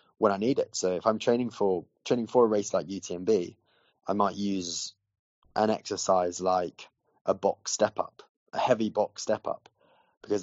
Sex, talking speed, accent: male, 180 wpm, British